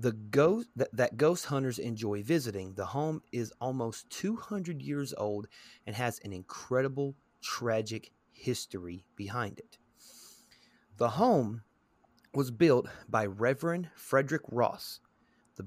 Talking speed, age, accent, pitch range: 125 wpm, 30-49, American, 105-135 Hz